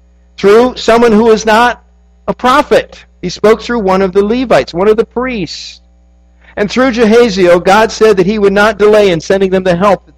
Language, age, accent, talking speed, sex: English, 50-69, American, 200 wpm, male